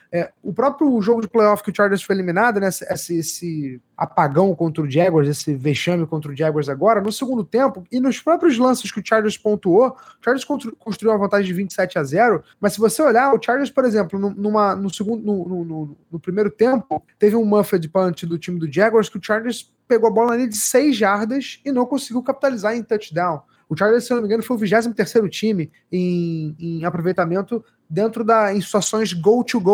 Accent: Brazilian